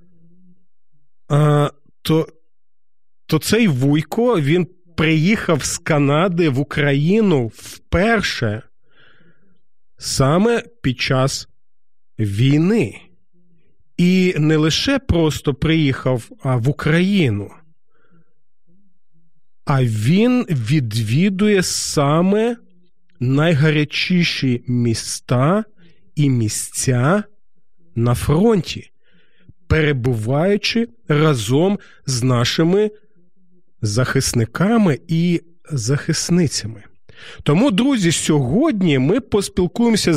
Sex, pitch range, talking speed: male, 135-180 Hz, 65 wpm